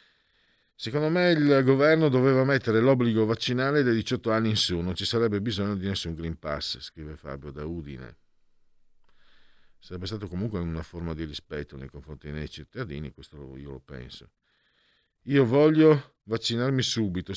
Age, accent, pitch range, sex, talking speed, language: 50-69, native, 85-120 Hz, male, 150 wpm, Italian